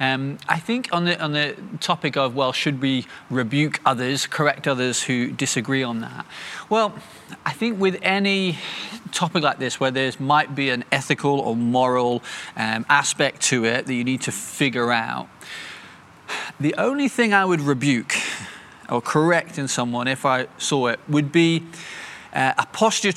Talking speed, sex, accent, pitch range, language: 170 wpm, male, British, 130-165 Hz, English